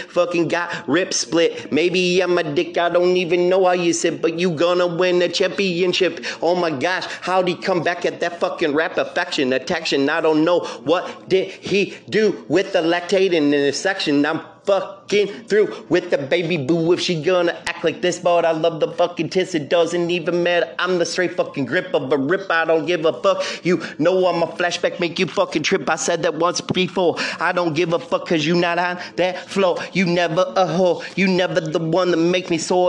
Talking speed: 220 wpm